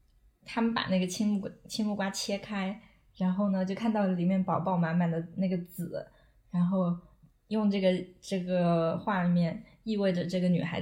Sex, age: female, 20-39